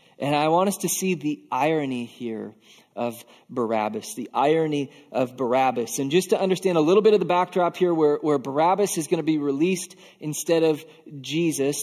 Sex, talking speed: male, 190 wpm